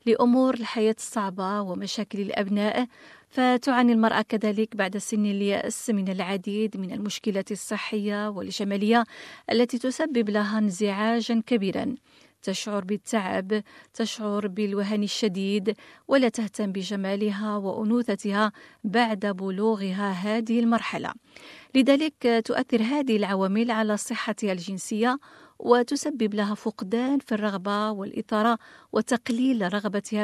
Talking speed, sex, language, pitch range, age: 100 wpm, female, Arabic, 205-240 Hz, 40-59